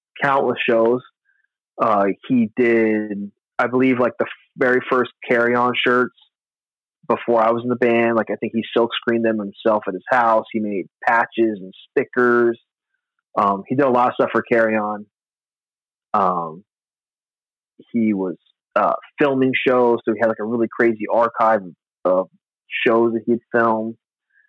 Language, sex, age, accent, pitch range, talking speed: English, male, 30-49, American, 105-120 Hz, 160 wpm